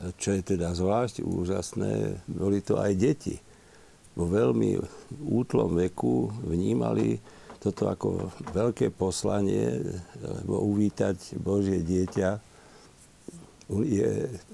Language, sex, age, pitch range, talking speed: Slovak, male, 50-69, 95-105 Hz, 95 wpm